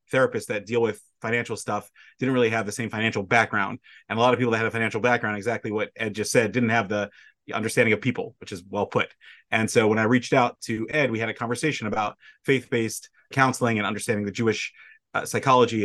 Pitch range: 105-125 Hz